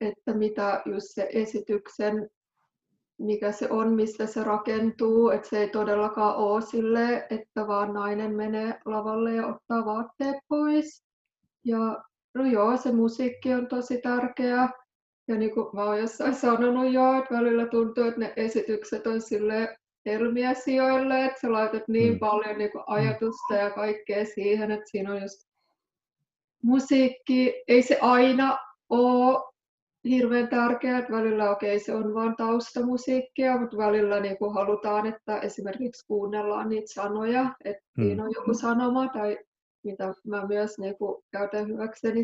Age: 20-39